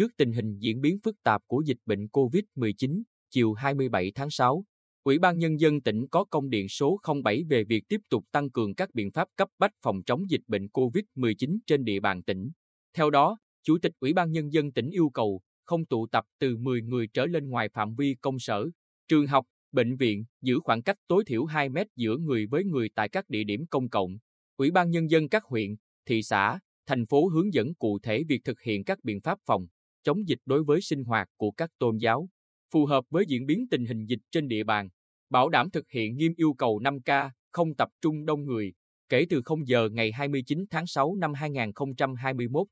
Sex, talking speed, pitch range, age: male, 215 wpm, 115-155 Hz, 20-39